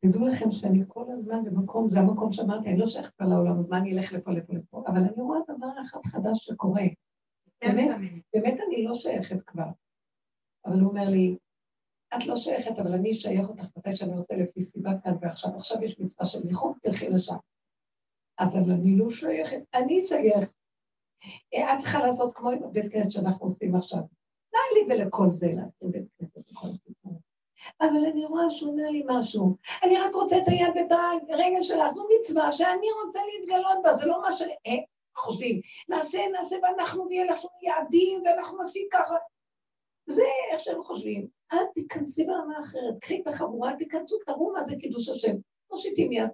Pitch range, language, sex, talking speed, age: 195-325 Hz, Hebrew, female, 170 wpm, 60-79